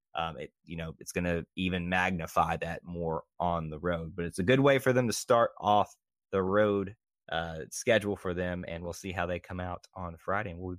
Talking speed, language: 235 wpm, English